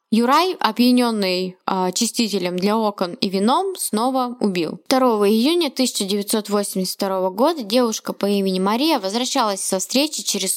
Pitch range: 205-250 Hz